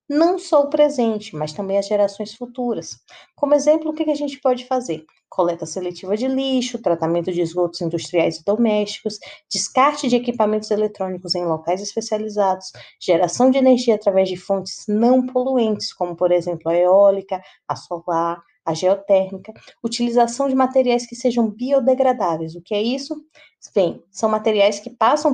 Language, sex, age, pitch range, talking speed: Portuguese, female, 20-39, 190-250 Hz, 155 wpm